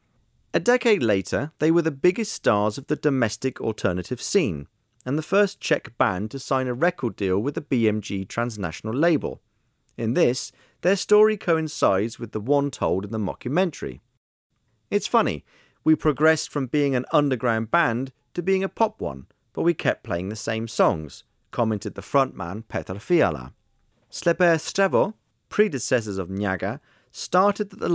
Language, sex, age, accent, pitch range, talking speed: Czech, male, 40-59, British, 110-155 Hz, 160 wpm